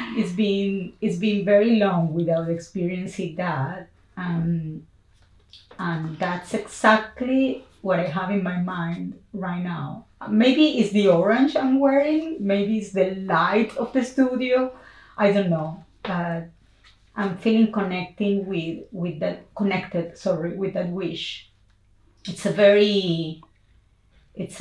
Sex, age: female, 30-49